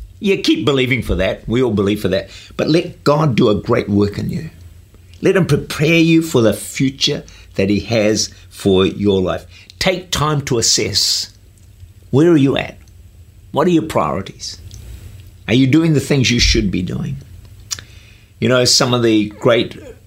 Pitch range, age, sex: 95-125 Hz, 50-69, male